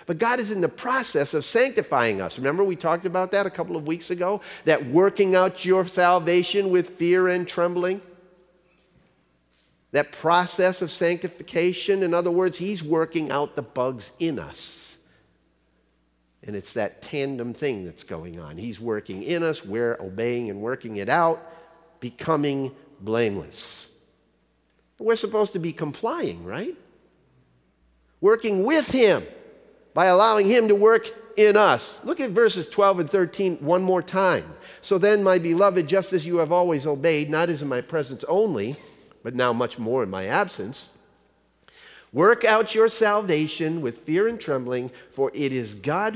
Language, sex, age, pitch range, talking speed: English, male, 50-69, 120-185 Hz, 160 wpm